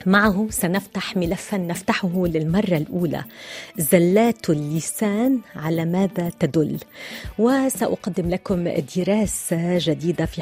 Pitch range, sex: 175-210 Hz, female